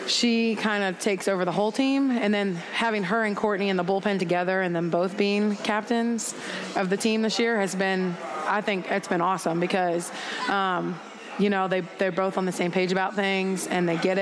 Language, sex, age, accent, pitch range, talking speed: English, female, 20-39, American, 180-205 Hz, 215 wpm